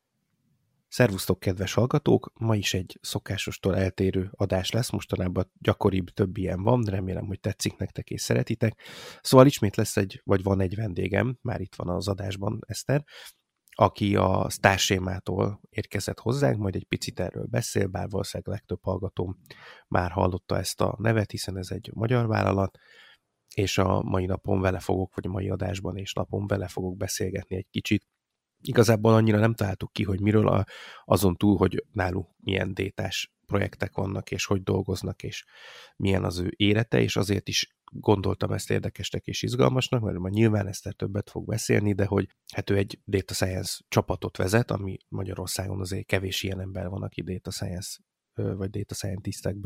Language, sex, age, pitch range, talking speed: Hungarian, male, 30-49, 95-105 Hz, 165 wpm